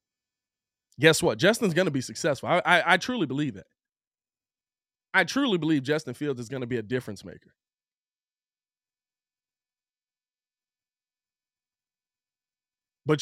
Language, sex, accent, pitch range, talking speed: English, male, American, 145-215 Hz, 120 wpm